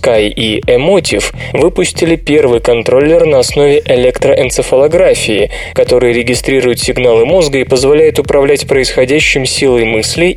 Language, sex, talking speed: Russian, male, 110 wpm